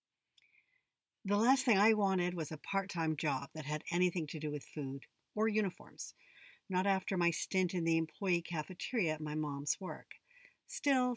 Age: 60-79